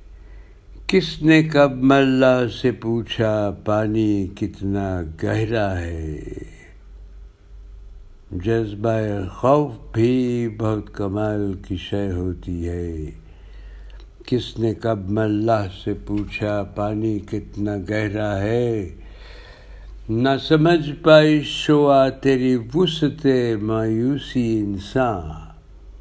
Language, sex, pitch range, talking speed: Urdu, male, 95-130 Hz, 85 wpm